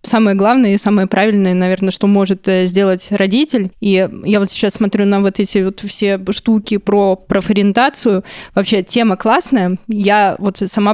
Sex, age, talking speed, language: female, 20-39, 160 wpm, Russian